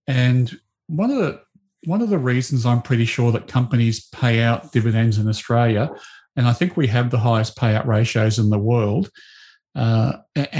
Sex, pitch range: male, 110-130 Hz